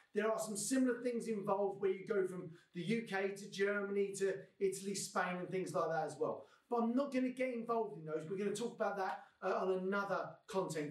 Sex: male